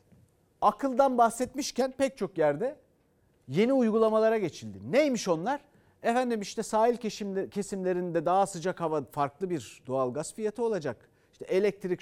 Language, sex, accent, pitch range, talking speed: Turkish, male, native, 175-245 Hz, 125 wpm